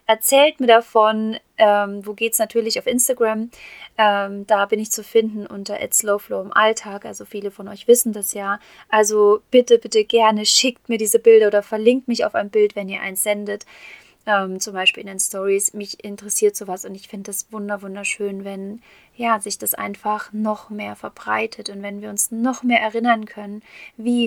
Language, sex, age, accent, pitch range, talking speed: German, female, 30-49, German, 200-230 Hz, 185 wpm